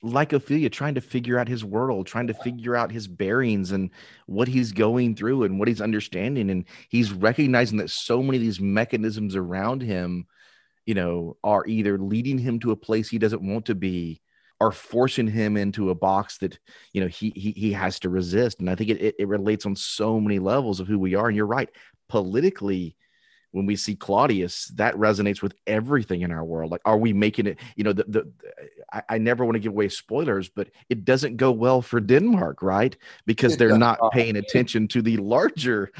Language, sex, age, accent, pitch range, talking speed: English, male, 30-49, American, 95-125 Hz, 210 wpm